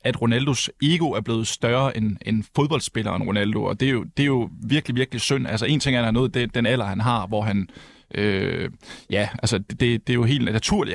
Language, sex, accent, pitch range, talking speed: Danish, male, native, 115-140 Hz, 230 wpm